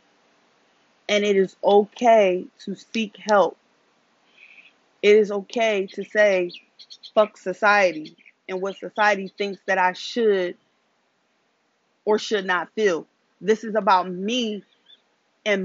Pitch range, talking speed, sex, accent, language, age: 205-250 Hz, 115 wpm, female, American, English, 20-39